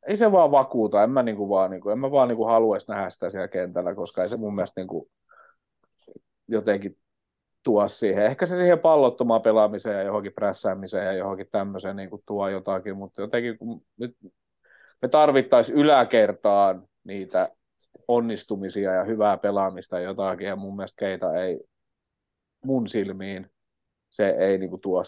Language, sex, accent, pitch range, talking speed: Finnish, male, native, 95-120 Hz, 165 wpm